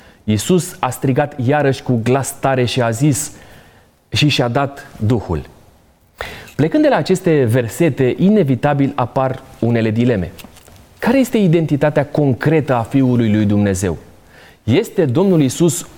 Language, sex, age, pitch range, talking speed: Romanian, male, 30-49, 120-150 Hz, 130 wpm